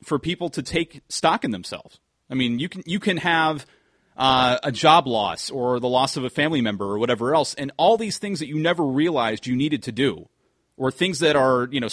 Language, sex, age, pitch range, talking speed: English, male, 30-49, 125-155 Hz, 230 wpm